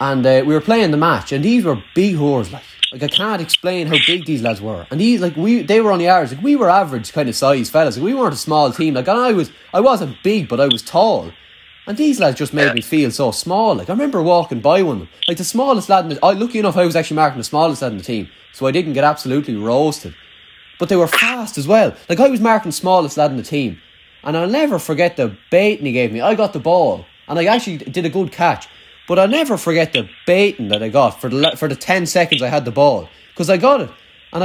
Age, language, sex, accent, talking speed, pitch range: 20-39, English, male, Irish, 275 wpm, 135-195 Hz